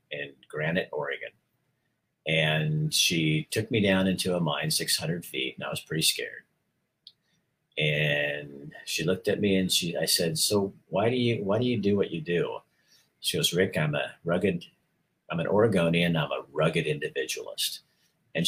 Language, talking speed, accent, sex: English, 170 wpm, American, male